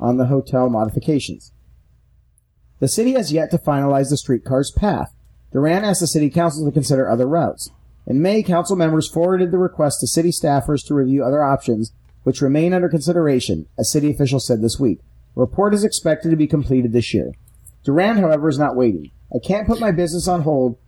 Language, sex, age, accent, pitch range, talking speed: English, male, 40-59, American, 130-165 Hz, 190 wpm